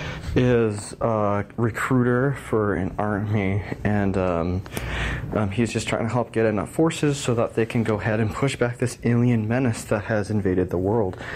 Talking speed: 180 wpm